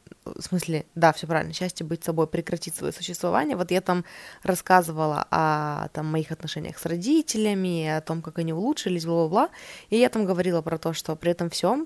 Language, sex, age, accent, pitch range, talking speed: Russian, female, 20-39, native, 165-210 Hz, 180 wpm